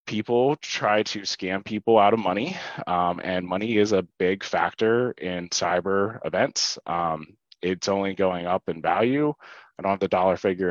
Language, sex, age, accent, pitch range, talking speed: English, male, 20-39, American, 90-115 Hz, 175 wpm